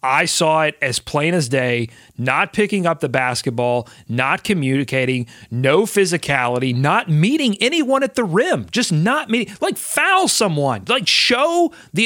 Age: 40-59